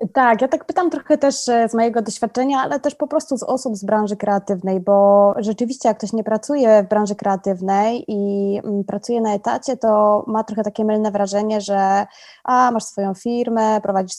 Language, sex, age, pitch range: Polish, female, 20-39, 195-235 Hz